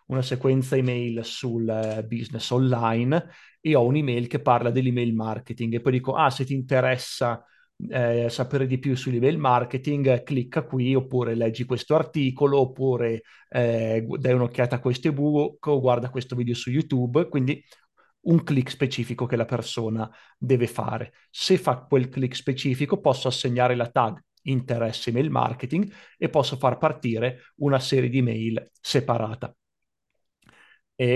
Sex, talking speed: male, 145 wpm